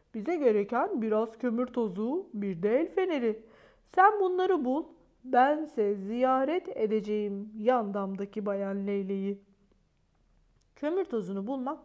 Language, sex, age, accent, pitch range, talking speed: Turkish, female, 40-59, native, 215-335 Hz, 105 wpm